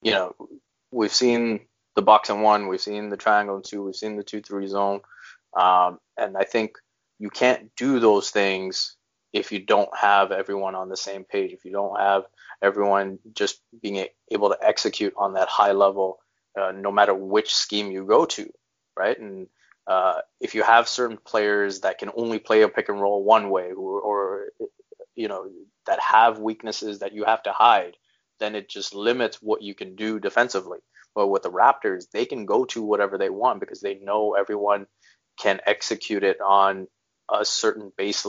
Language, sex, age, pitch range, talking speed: English, male, 20-39, 100-115 Hz, 185 wpm